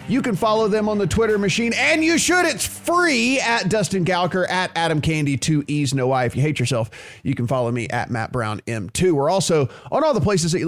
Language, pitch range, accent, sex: English, 130-170 Hz, American, male